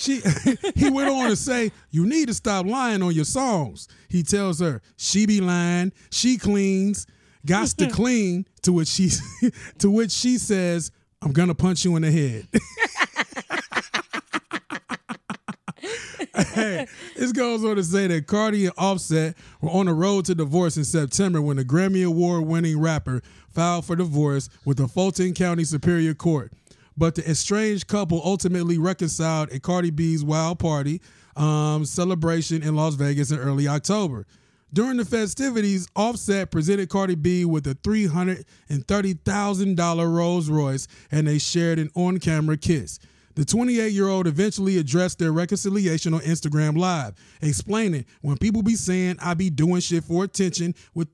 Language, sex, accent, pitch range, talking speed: English, male, American, 155-195 Hz, 155 wpm